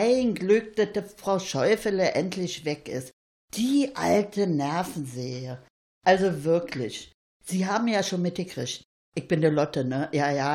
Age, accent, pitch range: 60-79, German, 160-230 Hz